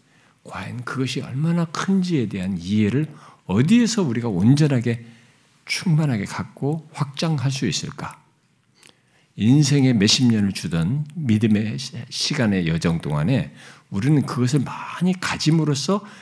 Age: 50-69